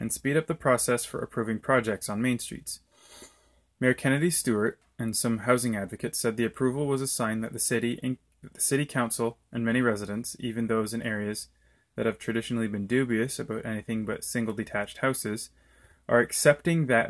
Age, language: 20-39, English